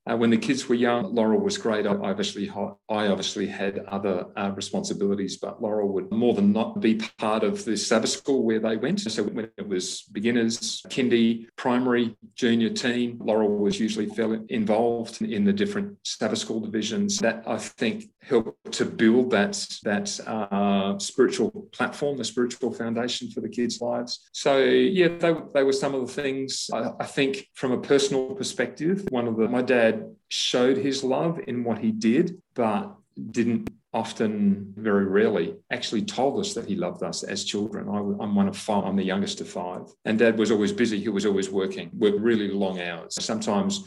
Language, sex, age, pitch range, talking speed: English, male, 40-59, 100-135 Hz, 185 wpm